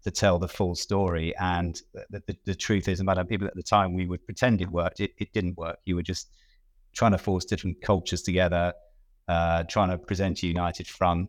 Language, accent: English, British